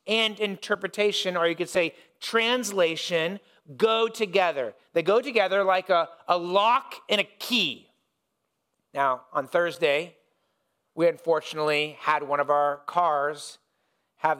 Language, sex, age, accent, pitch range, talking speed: English, male, 40-59, American, 160-210 Hz, 125 wpm